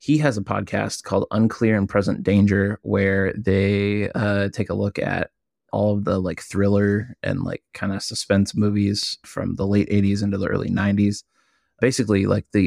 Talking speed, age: 180 wpm, 20-39